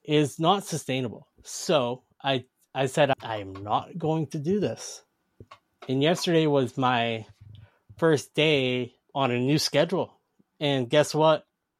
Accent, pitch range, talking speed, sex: American, 125-155 Hz, 130 wpm, male